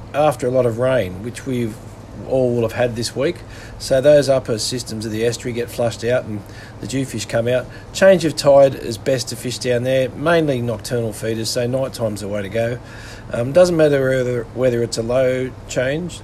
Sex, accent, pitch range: male, Australian, 115-140 Hz